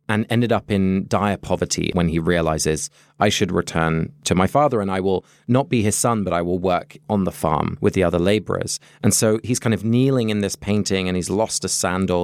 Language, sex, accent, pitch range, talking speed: English, male, British, 90-115 Hz, 230 wpm